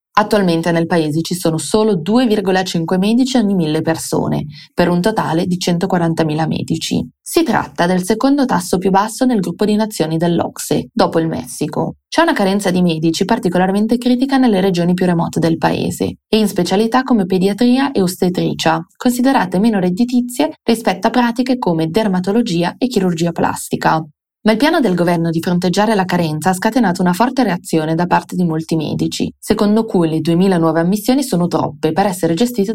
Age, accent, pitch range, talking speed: 20-39, native, 165-220 Hz, 170 wpm